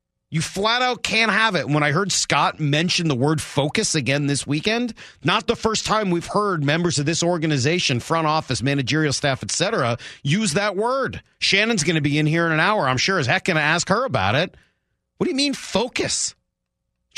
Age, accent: 40-59, American